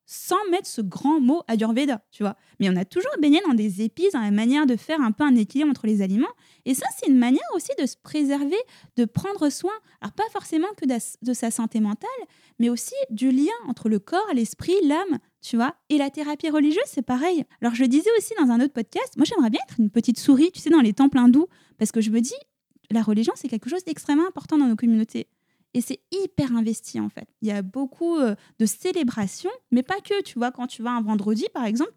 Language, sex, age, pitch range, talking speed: French, female, 10-29, 230-310 Hz, 240 wpm